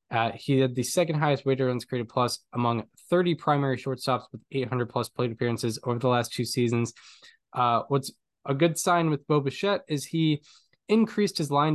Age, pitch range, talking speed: 10-29, 120-150 Hz, 190 wpm